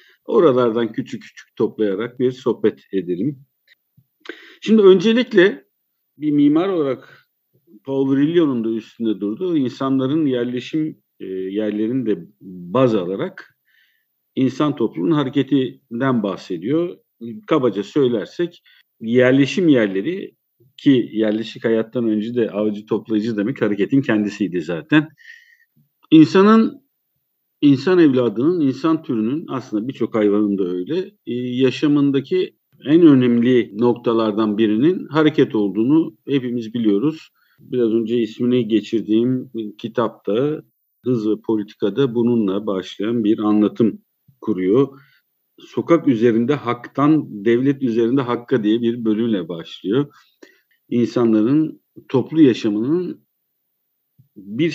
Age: 50-69